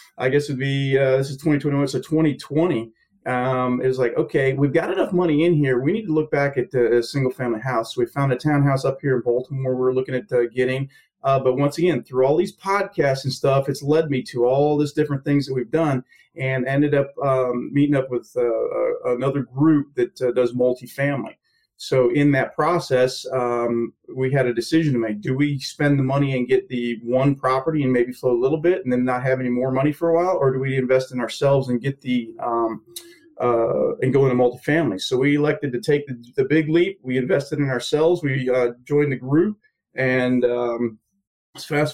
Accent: American